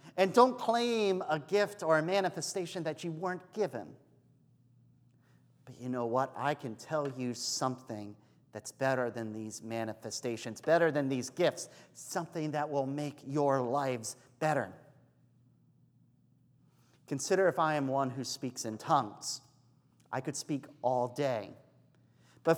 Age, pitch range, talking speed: 40-59, 125-195 Hz, 140 wpm